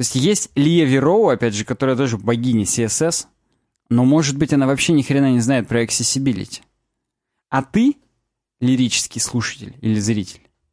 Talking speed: 155 wpm